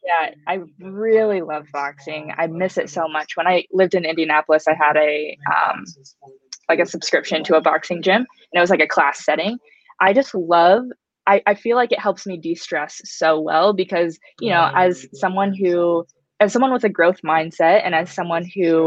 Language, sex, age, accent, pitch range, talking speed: English, female, 20-39, American, 160-185 Hz, 195 wpm